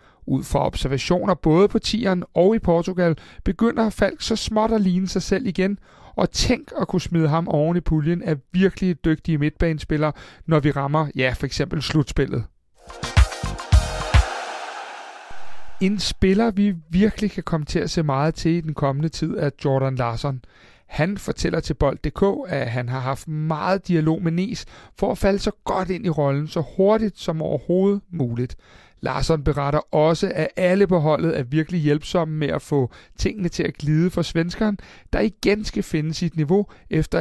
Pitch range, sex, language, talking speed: 150-190 Hz, male, Danish, 170 wpm